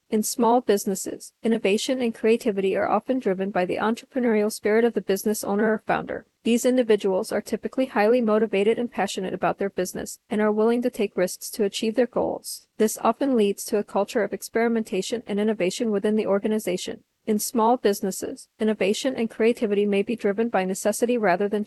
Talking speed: 185 wpm